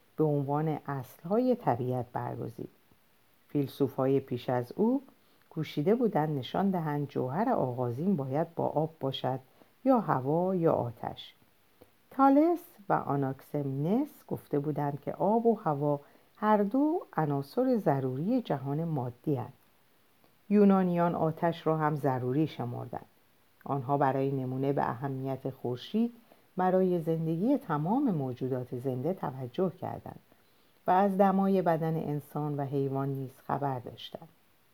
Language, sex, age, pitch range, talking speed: Persian, female, 50-69, 135-185 Hz, 115 wpm